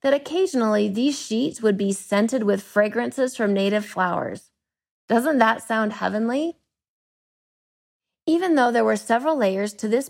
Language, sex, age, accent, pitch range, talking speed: English, female, 30-49, American, 210-270 Hz, 145 wpm